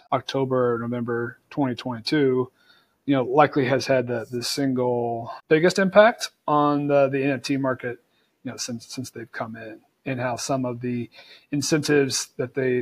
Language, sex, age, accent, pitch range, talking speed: English, male, 30-49, American, 130-150 Hz, 155 wpm